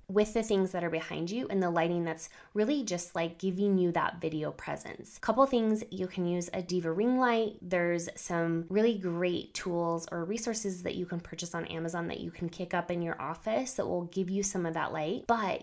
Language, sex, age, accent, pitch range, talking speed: English, female, 20-39, American, 170-215 Hz, 225 wpm